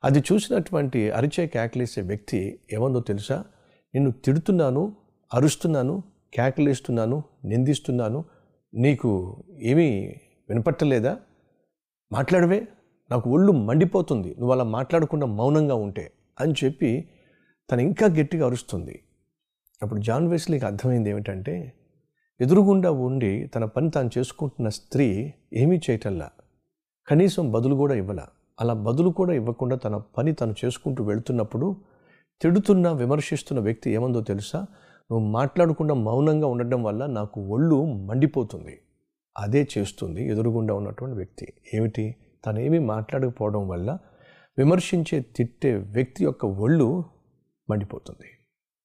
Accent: native